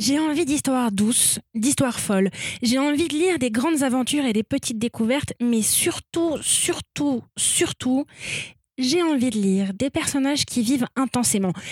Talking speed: 155 wpm